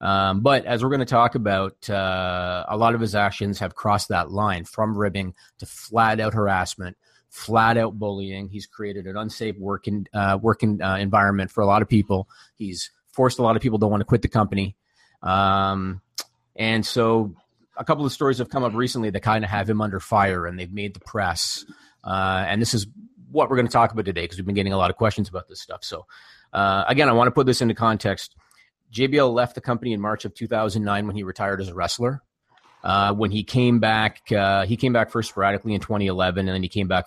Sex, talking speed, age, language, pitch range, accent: male, 225 wpm, 30-49, English, 95-115 Hz, American